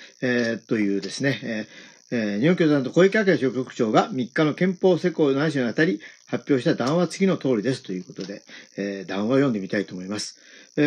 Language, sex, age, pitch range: Japanese, male, 40-59, 145-205 Hz